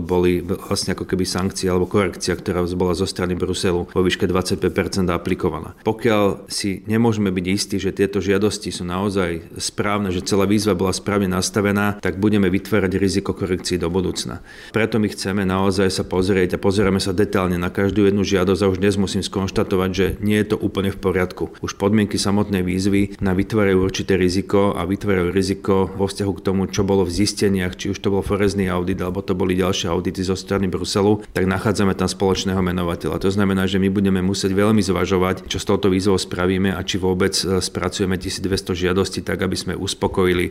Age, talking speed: 30-49, 190 wpm